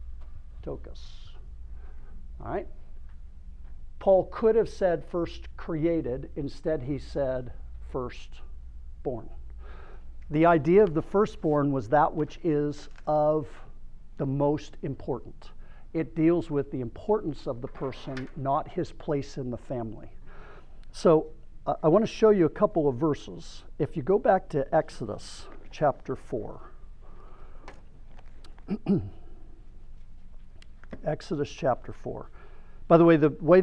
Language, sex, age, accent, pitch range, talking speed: English, male, 60-79, American, 125-170 Hz, 120 wpm